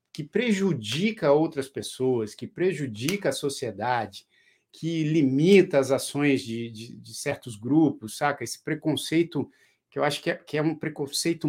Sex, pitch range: male, 130-170 Hz